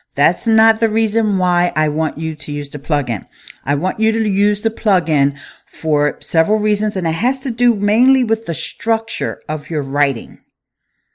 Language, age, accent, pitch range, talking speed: English, 50-69, American, 160-230 Hz, 185 wpm